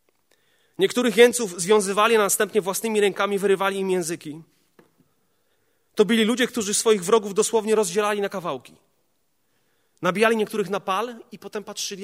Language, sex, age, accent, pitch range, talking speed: Polish, male, 30-49, native, 170-225 Hz, 130 wpm